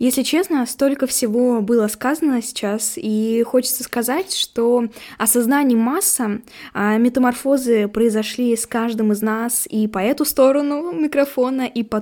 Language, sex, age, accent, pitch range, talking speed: Russian, female, 10-29, native, 210-255 Hz, 130 wpm